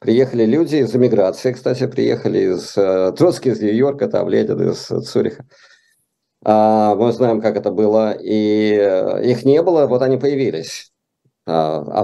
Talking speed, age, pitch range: 140 wpm, 50-69, 105-130 Hz